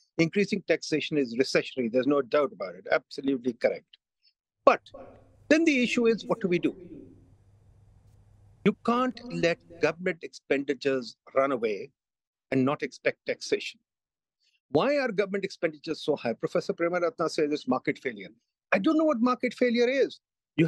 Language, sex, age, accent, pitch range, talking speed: English, male, 50-69, Indian, 150-230 Hz, 150 wpm